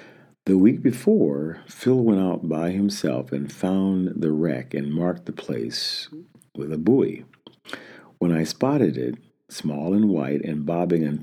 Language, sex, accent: English, male, American